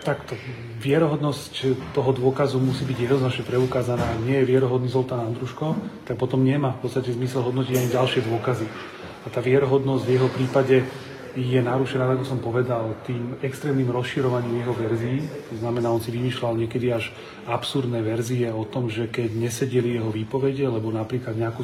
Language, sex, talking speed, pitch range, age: Slovak, male, 160 wpm, 120-130 Hz, 30-49